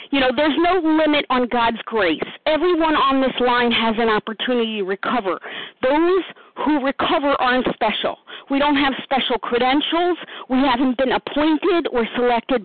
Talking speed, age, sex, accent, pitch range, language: 155 wpm, 50-69, female, American, 245-295 Hz, English